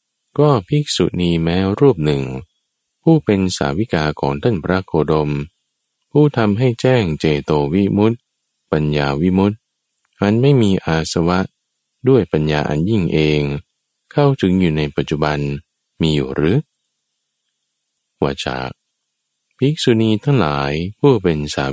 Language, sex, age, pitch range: Thai, male, 20-39, 75-110 Hz